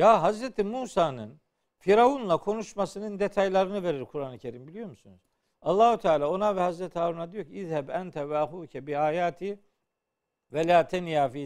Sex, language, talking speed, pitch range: male, Turkish, 145 wpm, 140-195 Hz